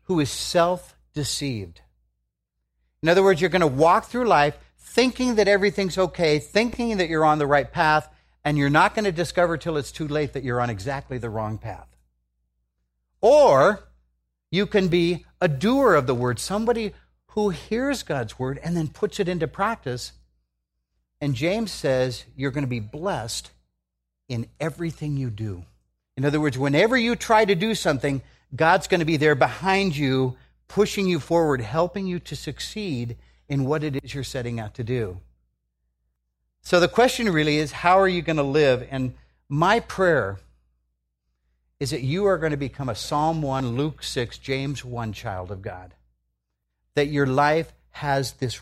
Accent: American